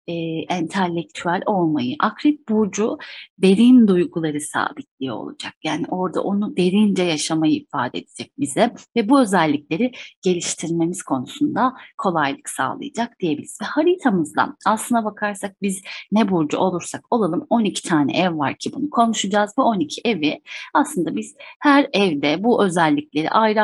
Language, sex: Turkish, female